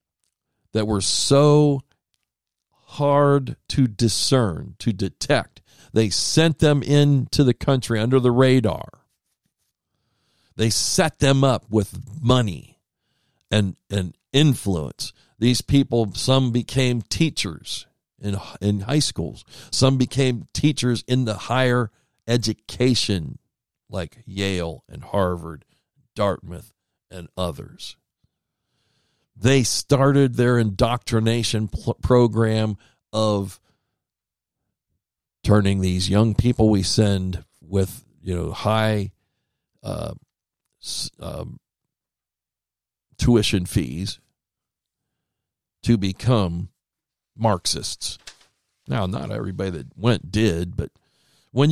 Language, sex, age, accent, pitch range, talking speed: English, male, 50-69, American, 95-130 Hz, 95 wpm